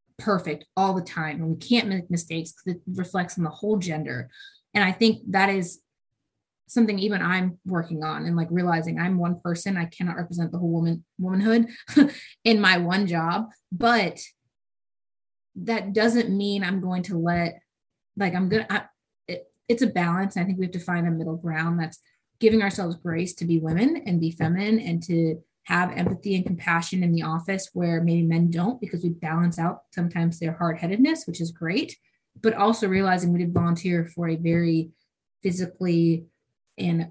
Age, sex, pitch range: 20-39, female, 170-200 Hz